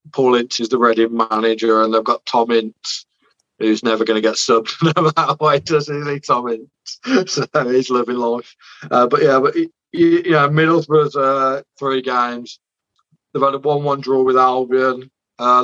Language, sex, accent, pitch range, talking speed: English, male, British, 115-130 Hz, 170 wpm